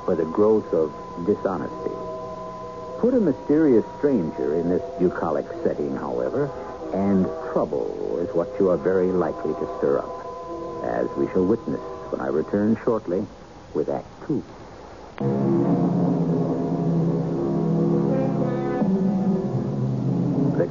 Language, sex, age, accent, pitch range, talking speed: English, male, 60-79, American, 90-145 Hz, 105 wpm